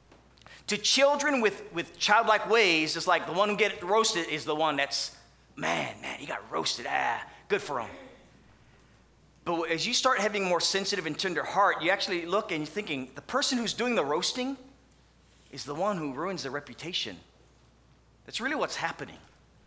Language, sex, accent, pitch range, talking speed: English, male, American, 150-210 Hz, 185 wpm